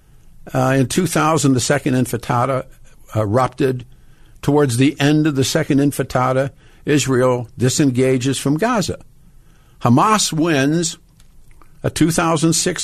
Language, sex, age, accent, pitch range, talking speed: English, male, 60-79, American, 120-150 Hz, 105 wpm